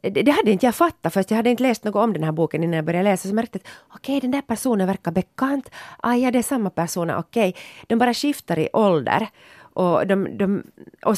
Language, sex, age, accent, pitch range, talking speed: Swedish, female, 30-49, Finnish, 165-225 Hz, 250 wpm